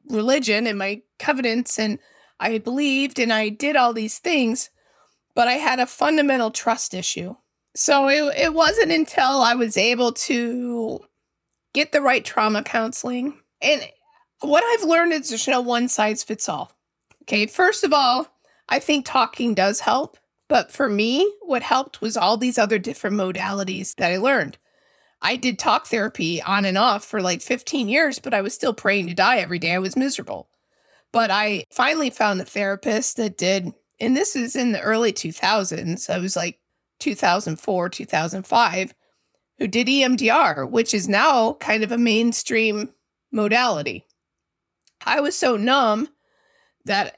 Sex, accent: female, American